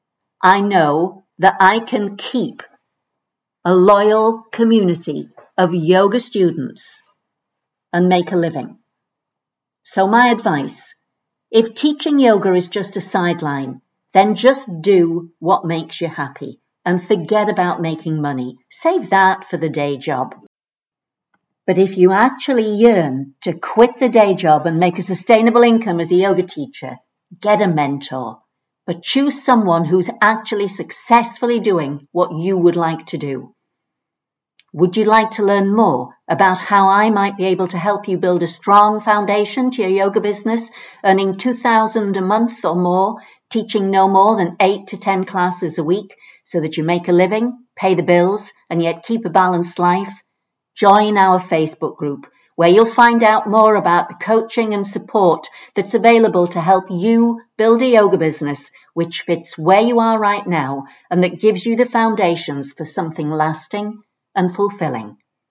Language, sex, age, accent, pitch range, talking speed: English, female, 50-69, British, 170-215 Hz, 160 wpm